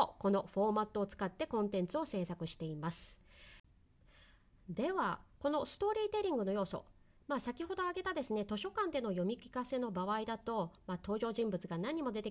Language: Japanese